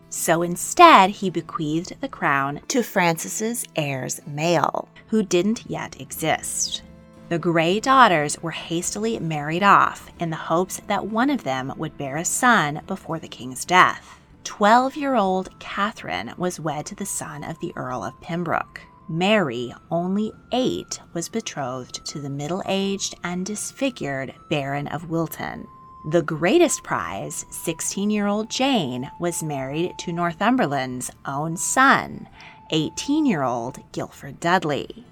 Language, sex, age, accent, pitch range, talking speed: English, female, 30-49, American, 155-210 Hz, 130 wpm